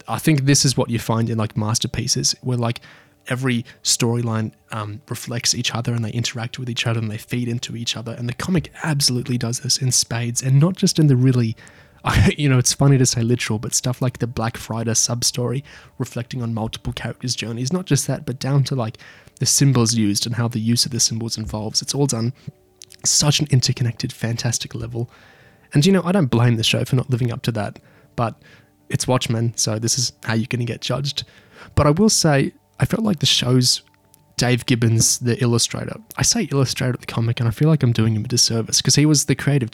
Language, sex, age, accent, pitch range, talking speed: English, male, 20-39, Australian, 115-135 Hz, 220 wpm